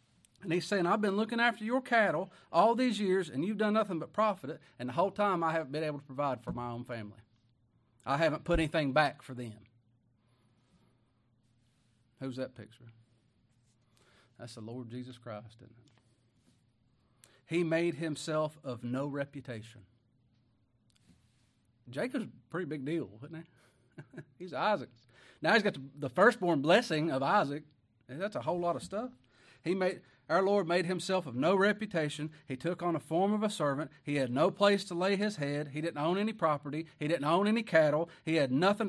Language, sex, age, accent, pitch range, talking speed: English, male, 40-59, American, 115-160 Hz, 180 wpm